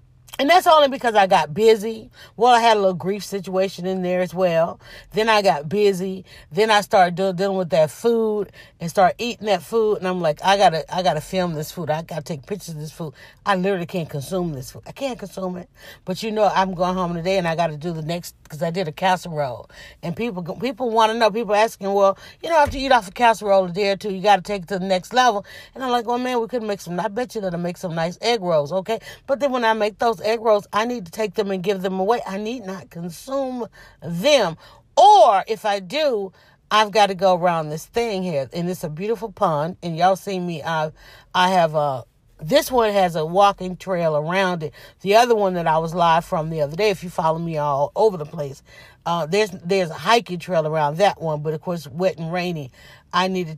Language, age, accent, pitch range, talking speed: English, 40-59, American, 160-215 Hz, 250 wpm